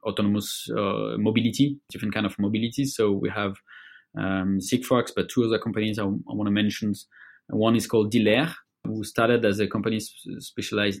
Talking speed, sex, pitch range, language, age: 175 wpm, male, 100-115 Hz, English, 20-39